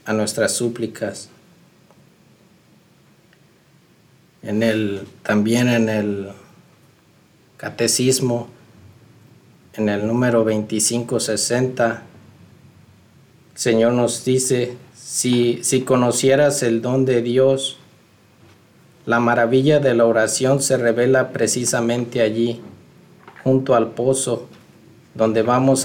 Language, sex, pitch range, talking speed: Spanish, male, 115-130 Hz, 85 wpm